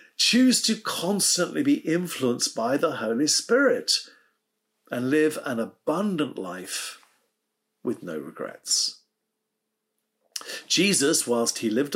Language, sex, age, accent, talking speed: English, male, 50-69, British, 105 wpm